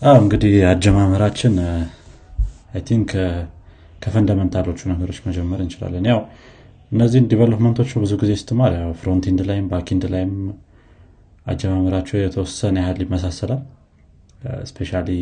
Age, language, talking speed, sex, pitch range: 30-49, Amharic, 95 wpm, male, 90-110 Hz